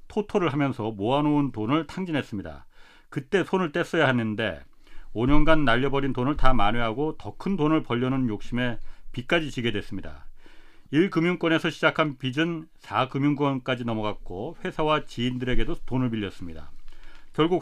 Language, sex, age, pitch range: Korean, male, 40-59, 120-160 Hz